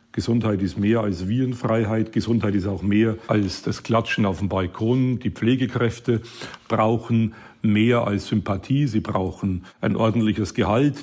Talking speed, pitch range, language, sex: 140 wpm, 105-120 Hz, German, male